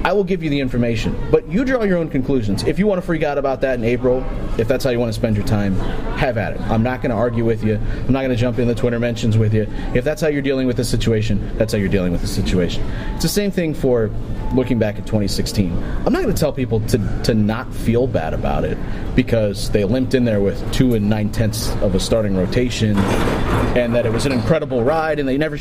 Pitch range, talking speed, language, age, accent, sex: 110-150 Hz, 255 wpm, English, 30-49, American, male